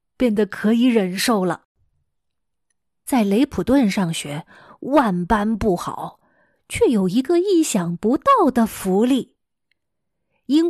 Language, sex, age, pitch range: Chinese, female, 20-39, 210-290 Hz